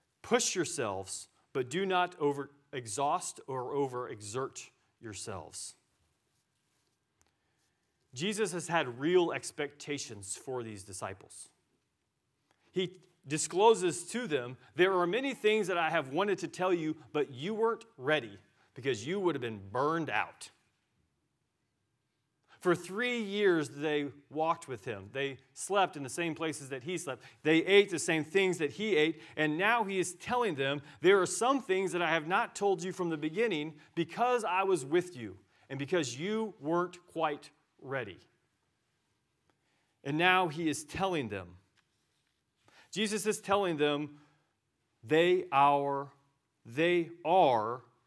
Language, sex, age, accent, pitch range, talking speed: English, male, 40-59, American, 140-185 Hz, 135 wpm